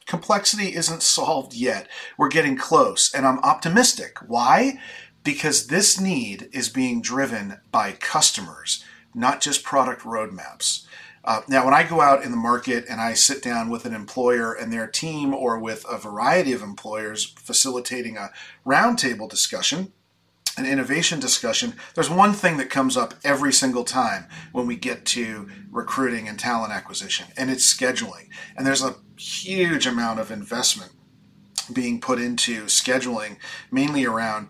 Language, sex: English, male